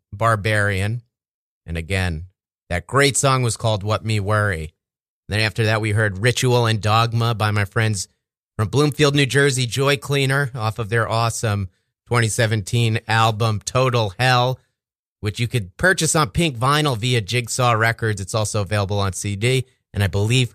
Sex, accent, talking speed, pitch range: male, American, 160 wpm, 105-135 Hz